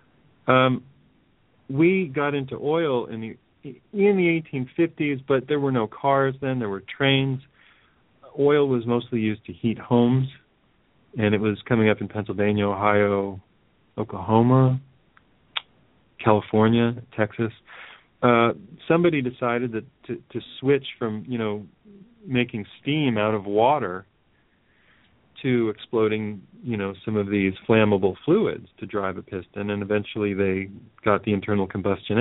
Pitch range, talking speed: 105-125 Hz, 135 wpm